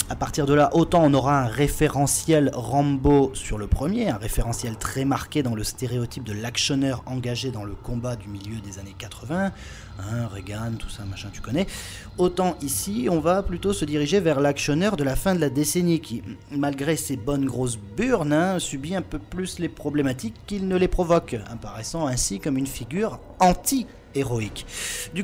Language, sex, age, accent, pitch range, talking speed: French, male, 30-49, French, 120-180 Hz, 185 wpm